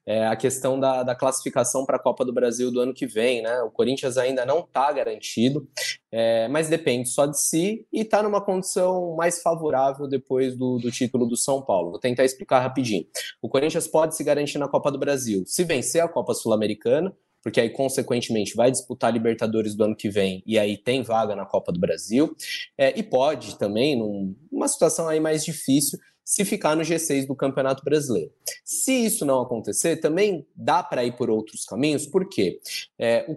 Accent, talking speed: Brazilian, 195 wpm